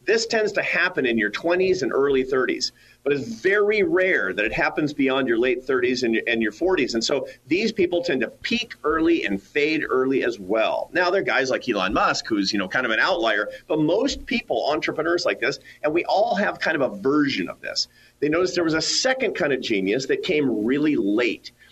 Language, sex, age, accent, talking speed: English, male, 40-59, American, 225 wpm